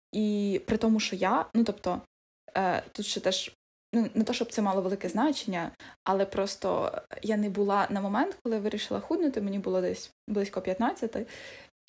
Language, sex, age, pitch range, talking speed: Ukrainian, female, 10-29, 195-230 Hz, 170 wpm